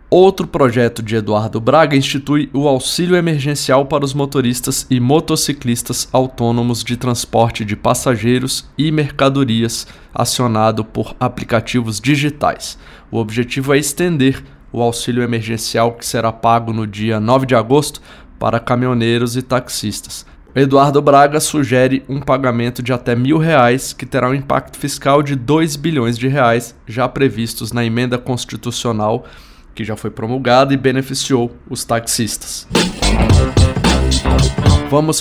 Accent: Brazilian